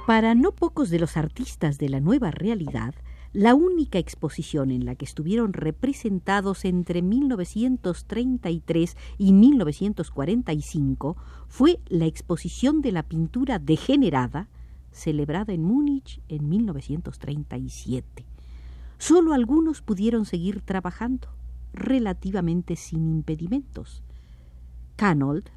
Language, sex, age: Spanish, female, 50-69